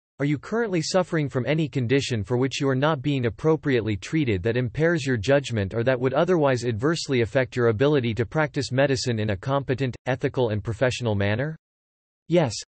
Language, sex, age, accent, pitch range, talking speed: English, male, 40-59, American, 115-150 Hz, 180 wpm